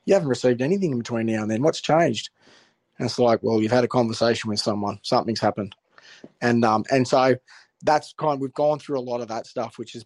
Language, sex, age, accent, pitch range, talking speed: English, male, 20-39, Australian, 115-125 Hz, 240 wpm